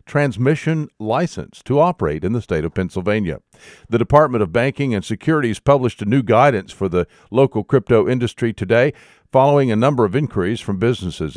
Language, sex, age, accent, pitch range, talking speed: English, male, 50-69, American, 110-135 Hz, 170 wpm